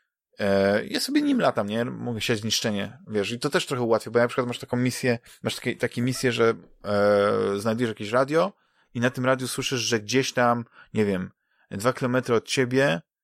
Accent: native